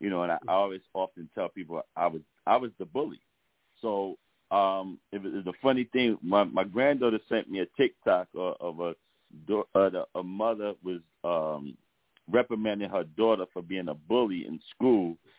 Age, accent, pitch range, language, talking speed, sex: 50-69, American, 85-110 Hz, English, 170 wpm, male